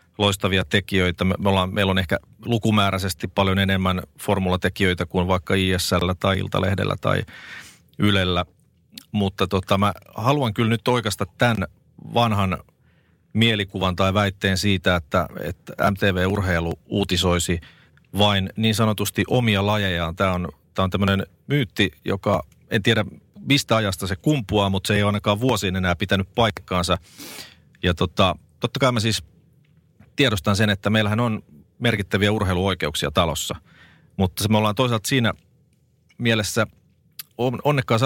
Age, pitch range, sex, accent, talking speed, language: 40-59, 95-115 Hz, male, native, 130 wpm, Finnish